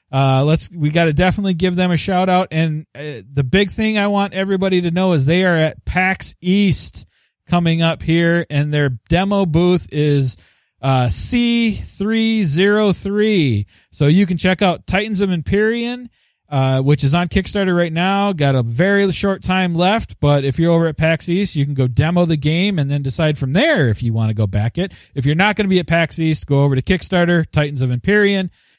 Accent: American